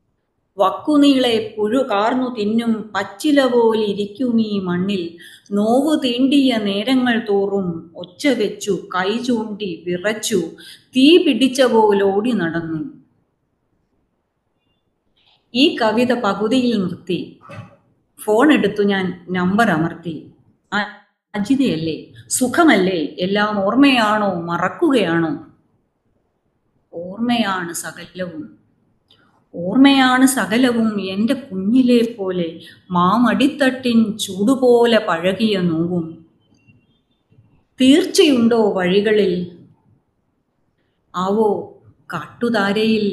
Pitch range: 180-240 Hz